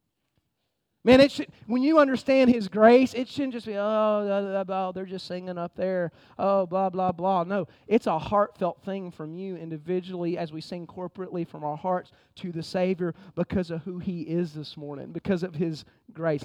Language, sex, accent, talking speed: English, male, American, 195 wpm